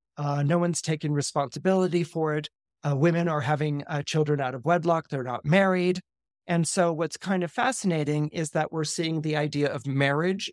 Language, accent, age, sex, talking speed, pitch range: English, American, 50-69, male, 190 wpm, 145-180 Hz